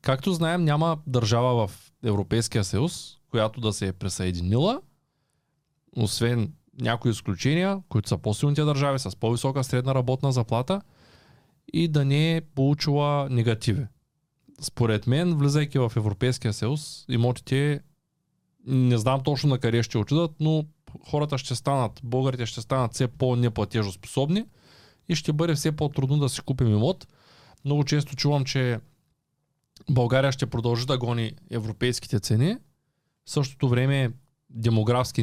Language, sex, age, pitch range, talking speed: Bulgarian, male, 20-39, 115-145 Hz, 130 wpm